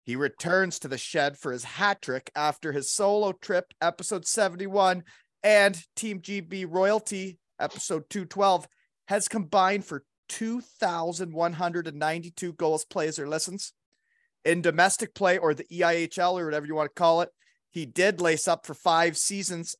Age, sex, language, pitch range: 30-49, male, English, 170-200 Hz